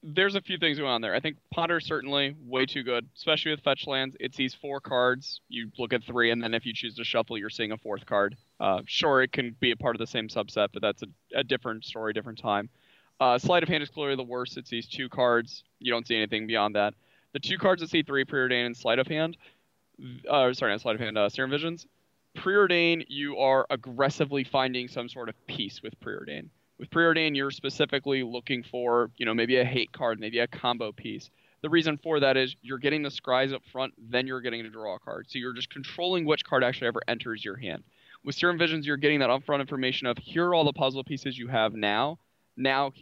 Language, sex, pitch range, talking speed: English, male, 120-145 Hz, 235 wpm